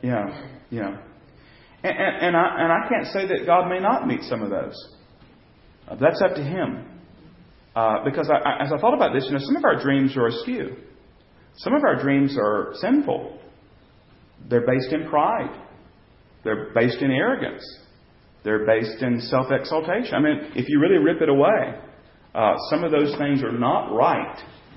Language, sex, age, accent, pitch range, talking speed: English, male, 40-59, American, 115-145 Hz, 175 wpm